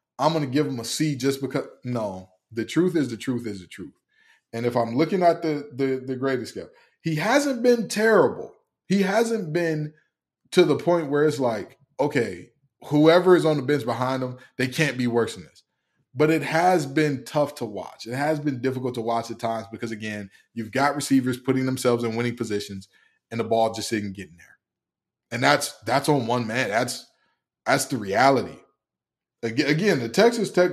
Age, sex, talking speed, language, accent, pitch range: 20-39, male, 200 wpm, English, American, 120-160 Hz